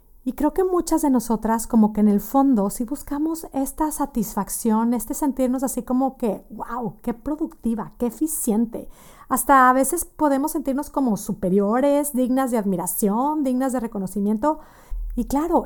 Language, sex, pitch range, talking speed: Spanish, female, 215-280 Hz, 155 wpm